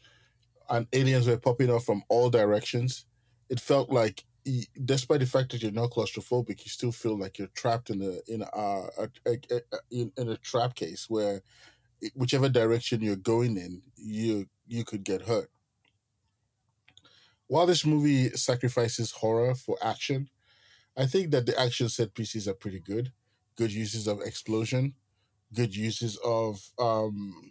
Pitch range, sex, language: 105-125 Hz, male, English